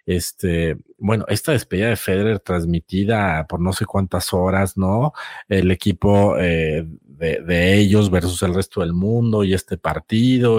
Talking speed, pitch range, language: 155 wpm, 95-120 Hz, Spanish